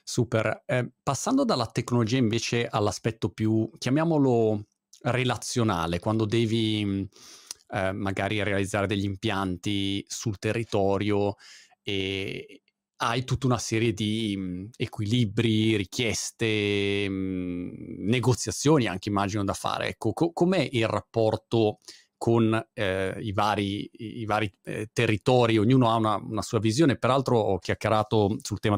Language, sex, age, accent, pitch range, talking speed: Italian, male, 30-49, native, 105-120 Hz, 115 wpm